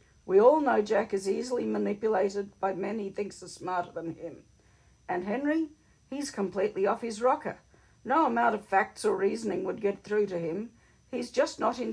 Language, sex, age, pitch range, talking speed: English, female, 60-79, 150-220 Hz, 185 wpm